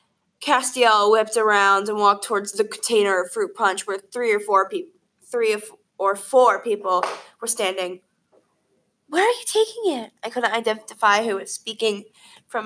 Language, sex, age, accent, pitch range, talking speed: English, female, 10-29, American, 195-270 Hz, 170 wpm